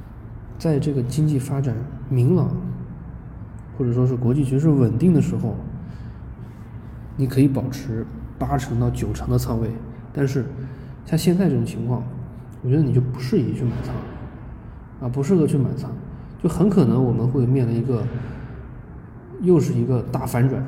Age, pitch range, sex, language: 20-39, 115-140 Hz, male, Chinese